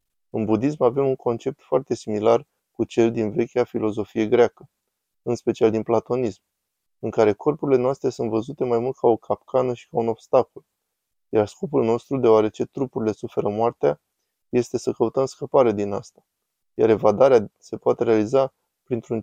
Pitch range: 110-130 Hz